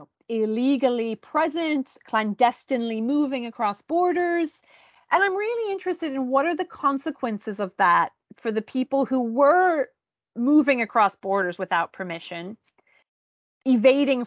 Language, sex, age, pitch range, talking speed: English, female, 30-49, 215-290 Hz, 120 wpm